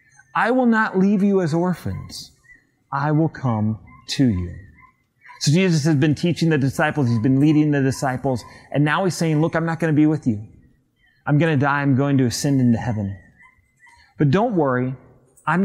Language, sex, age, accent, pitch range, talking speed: English, male, 30-49, American, 130-180 Hz, 190 wpm